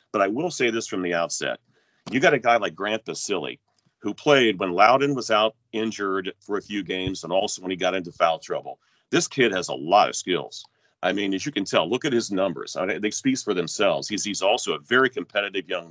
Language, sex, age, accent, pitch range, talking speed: English, male, 40-59, American, 90-110 Hz, 240 wpm